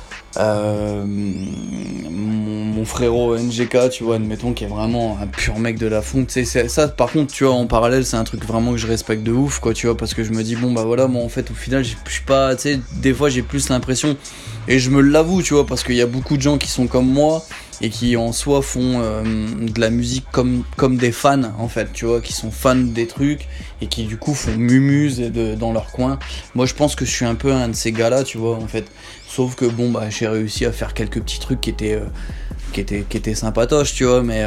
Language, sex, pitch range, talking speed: French, male, 110-130 Hz, 255 wpm